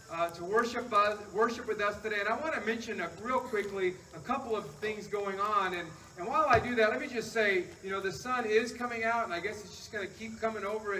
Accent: American